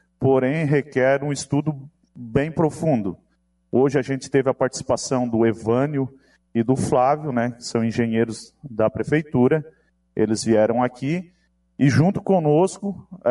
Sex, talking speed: male, 125 wpm